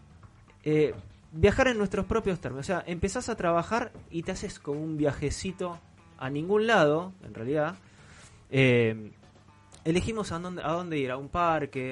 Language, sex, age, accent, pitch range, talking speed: Spanish, male, 20-39, Argentinian, 120-160 Hz, 160 wpm